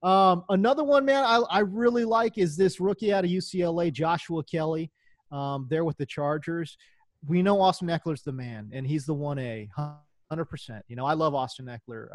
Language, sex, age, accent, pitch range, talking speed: English, male, 30-49, American, 140-185 Hz, 190 wpm